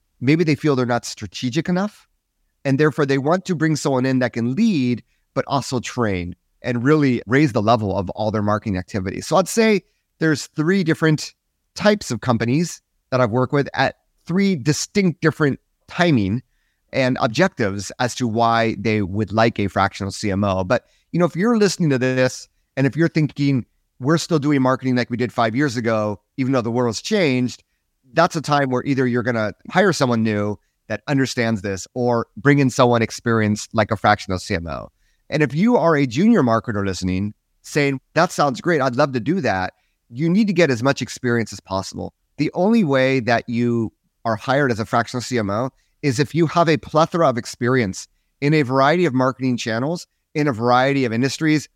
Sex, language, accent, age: male, English, American, 30-49